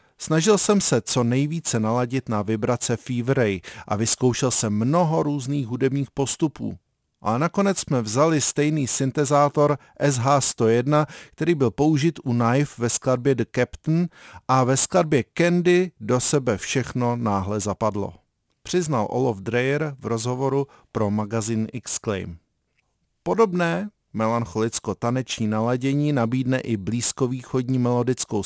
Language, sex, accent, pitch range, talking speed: Czech, male, native, 110-145 Hz, 120 wpm